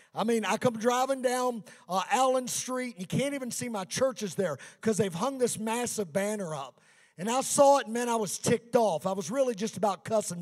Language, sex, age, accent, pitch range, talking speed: English, male, 50-69, American, 225-300 Hz, 230 wpm